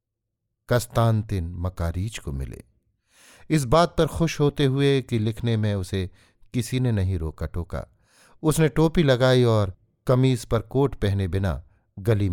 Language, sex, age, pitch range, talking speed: Hindi, male, 50-69, 90-120 Hz, 145 wpm